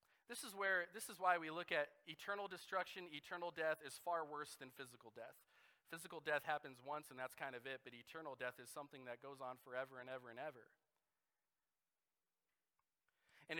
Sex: male